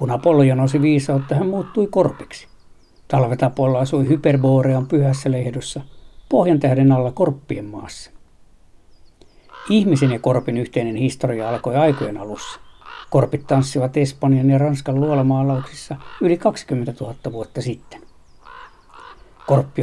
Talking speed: 110 wpm